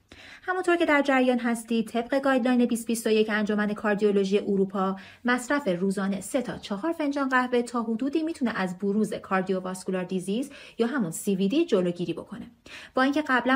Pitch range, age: 190-250 Hz, 30-49